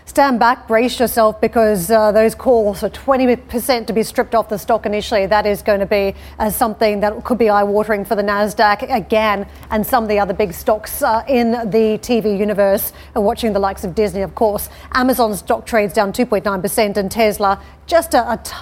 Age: 40-59